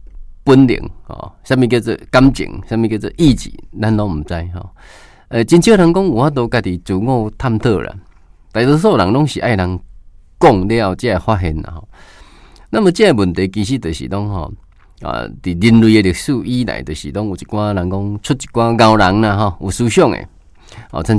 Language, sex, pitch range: Chinese, male, 85-115 Hz